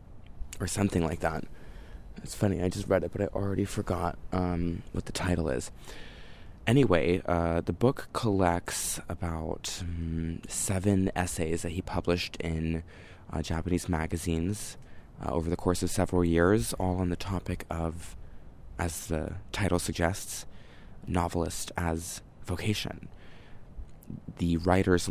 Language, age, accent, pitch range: English, 20-39, American, 85-95 Hz